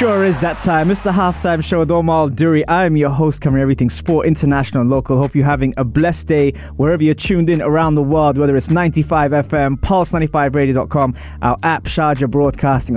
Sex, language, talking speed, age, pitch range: male, English, 190 wpm, 20-39, 125-170 Hz